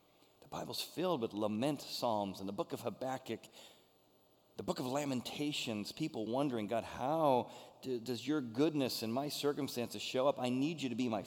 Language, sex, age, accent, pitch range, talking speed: English, male, 40-59, American, 110-145 Hz, 175 wpm